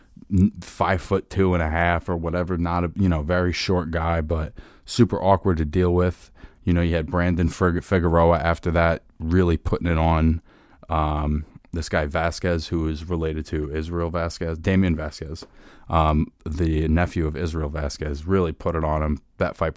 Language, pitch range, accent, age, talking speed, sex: English, 80-90 Hz, American, 20-39, 175 wpm, male